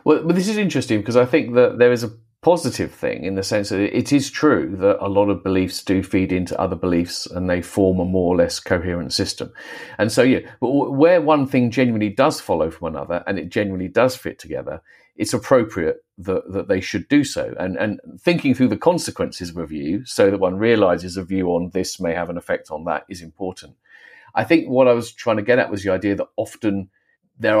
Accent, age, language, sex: British, 40-59, English, male